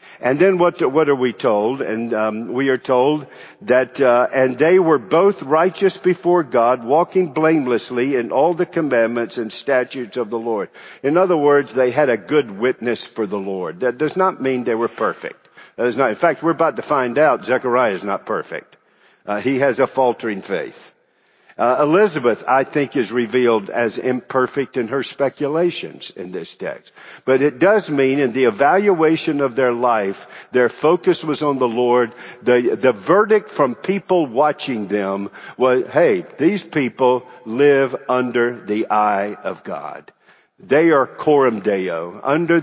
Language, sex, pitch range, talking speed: English, male, 120-155 Hz, 170 wpm